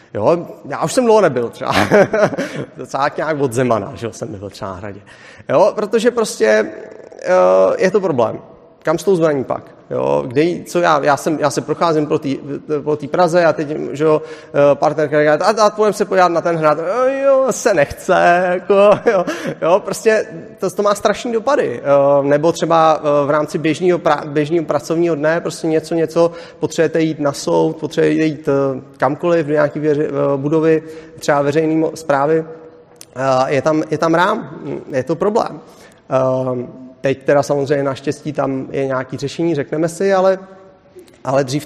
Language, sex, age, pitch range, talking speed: Czech, male, 30-49, 135-165 Hz, 160 wpm